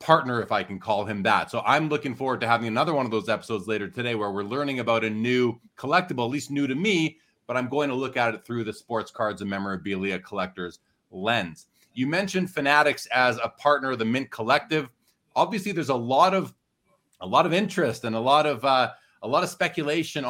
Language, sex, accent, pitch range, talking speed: English, male, American, 120-155 Hz, 220 wpm